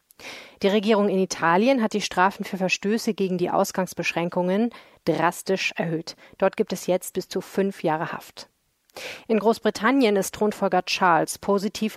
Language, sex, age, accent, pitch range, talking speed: German, female, 30-49, German, 170-205 Hz, 145 wpm